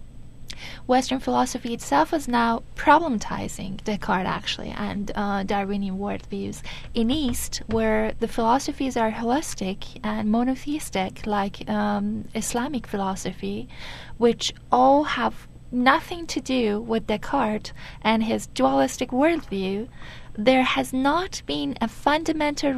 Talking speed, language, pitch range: 115 wpm, English, 210-265 Hz